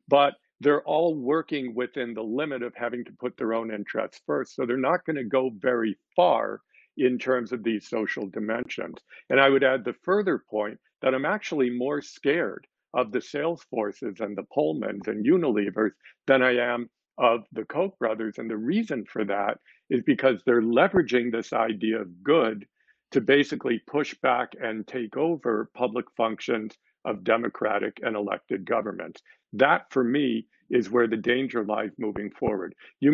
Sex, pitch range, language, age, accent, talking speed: male, 110-135 Hz, English, 50-69, American, 170 wpm